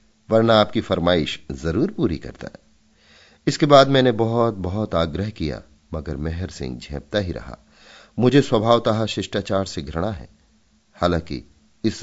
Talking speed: 140 wpm